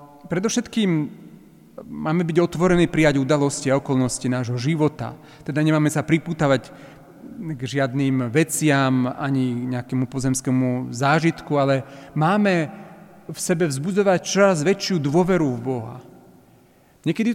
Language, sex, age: Slovak, male, 40-59